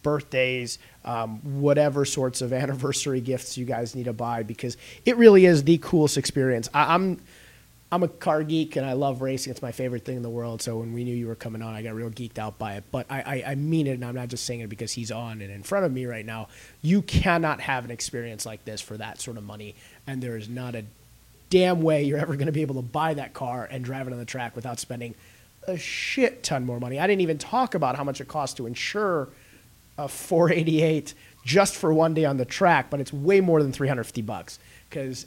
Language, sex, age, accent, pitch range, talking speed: English, male, 30-49, American, 120-155 Hz, 240 wpm